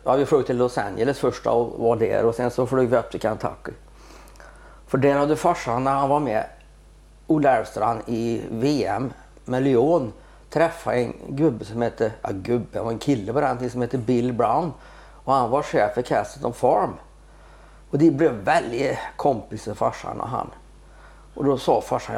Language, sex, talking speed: Swedish, male, 175 wpm